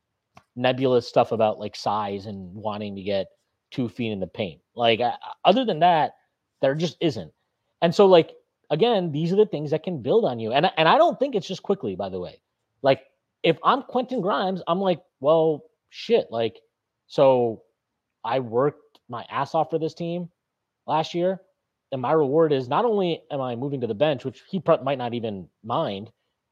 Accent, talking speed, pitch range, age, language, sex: American, 195 wpm, 120-175 Hz, 30-49, English, male